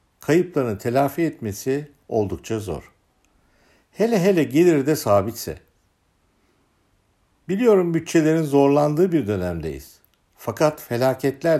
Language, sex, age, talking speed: Turkish, male, 60-79, 90 wpm